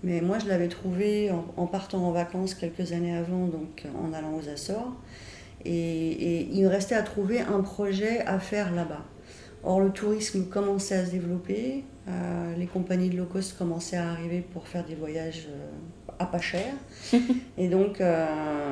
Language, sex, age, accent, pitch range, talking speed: French, female, 30-49, French, 170-195 Hz, 180 wpm